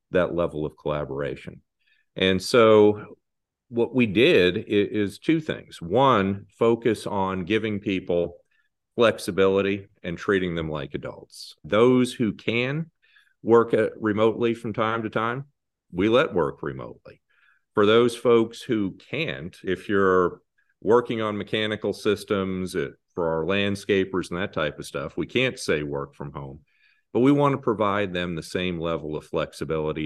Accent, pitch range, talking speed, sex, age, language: American, 85-110 Hz, 145 wpm, male, 40-59, English